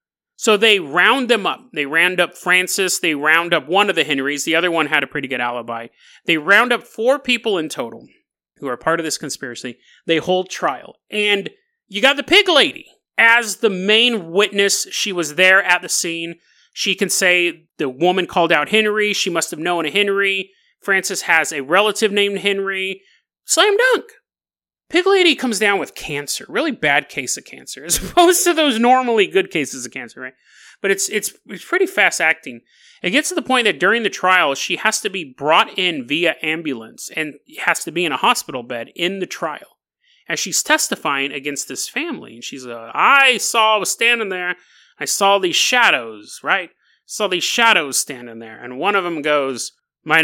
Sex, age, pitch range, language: male, 30-49, 165-230 Hz, English